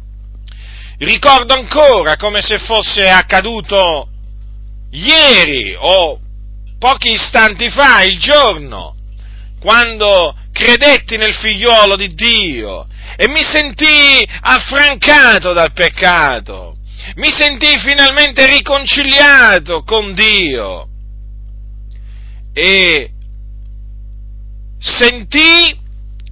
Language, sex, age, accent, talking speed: Italian, male, 50-69, native, 75 wpm